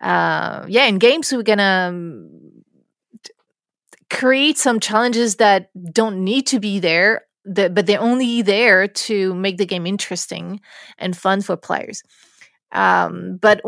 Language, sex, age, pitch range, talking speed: French, female, 30-49, 180-235 Hz, 140 wpm